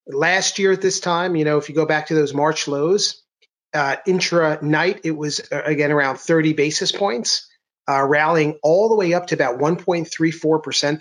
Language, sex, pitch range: English, male, 140-180 Hz